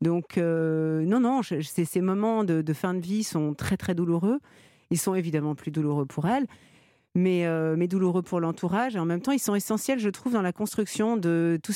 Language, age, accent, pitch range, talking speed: French, 50-69, French, 165-210 Hz, 225 wpm